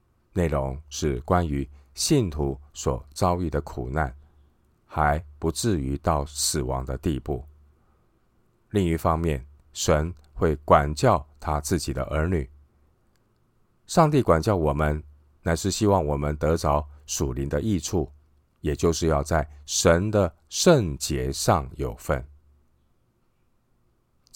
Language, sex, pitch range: Chinese, male, 70-85 Hz